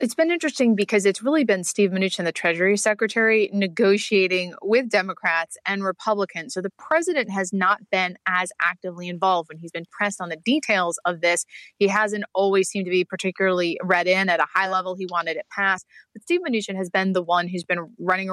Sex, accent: female, American